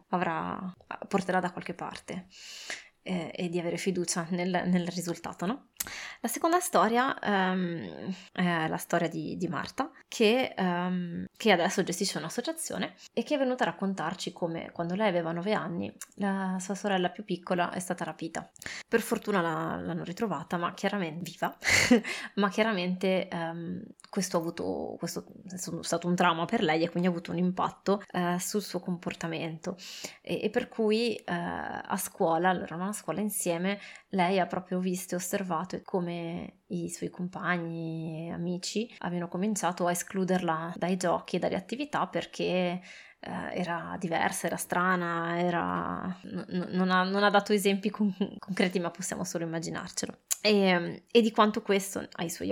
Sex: female